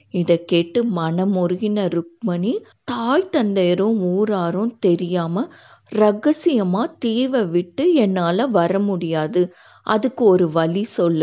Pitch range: 175-235 Hz